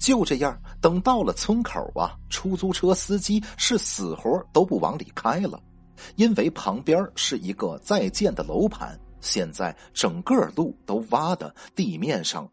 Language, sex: Chinese, male